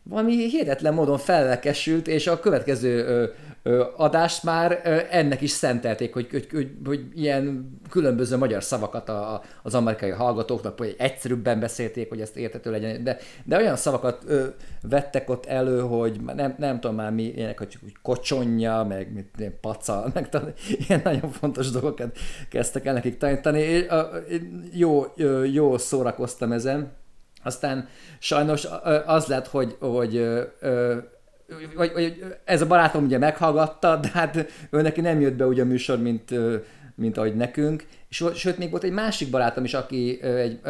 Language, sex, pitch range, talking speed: Hungarian, male, 115-150 Hz, 155 wpm